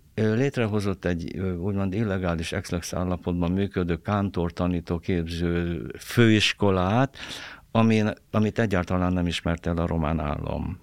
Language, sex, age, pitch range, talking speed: Hungarian, male, 60-79, 85-105 Hz, 110 wpm